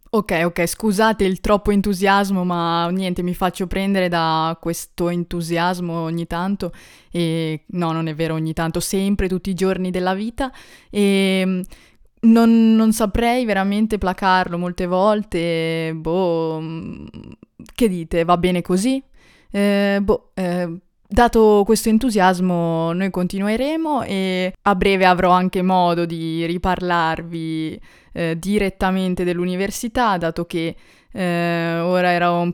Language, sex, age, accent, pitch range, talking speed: Italian, female, 20-39, native, 170-195 Hz, 125 wpm